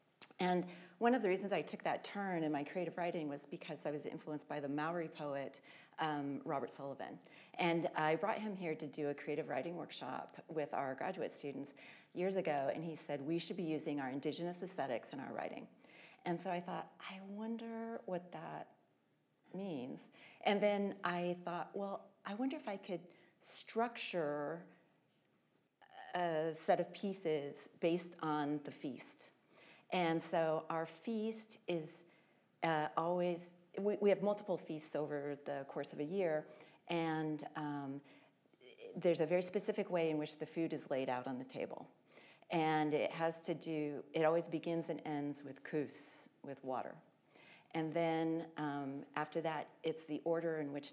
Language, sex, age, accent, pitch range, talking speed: English, female, 40-59, American, 145-175 Hz, 165 wpm